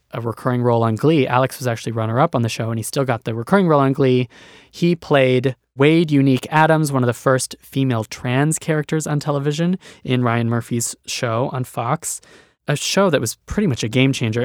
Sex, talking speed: male, 205 wpm